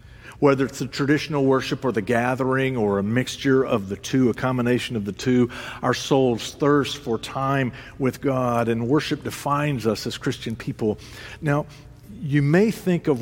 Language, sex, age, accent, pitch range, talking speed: English, male, 50-69, American, 115-145 Hz, 170 wpm